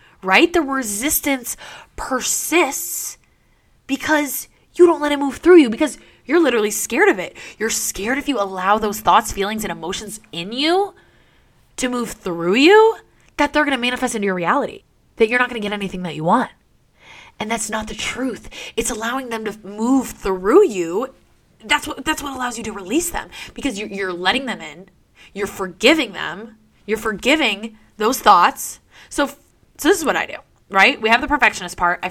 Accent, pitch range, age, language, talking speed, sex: American, 190-265 Hz, 20-39, English, 185 wpm, female